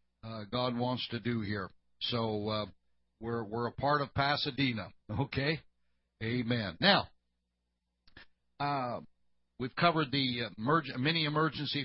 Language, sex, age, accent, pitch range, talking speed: English, male, 60-79, American, 110-135 Hz, 120 wpm